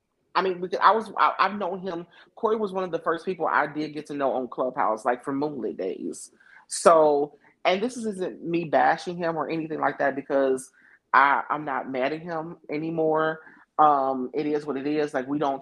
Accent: American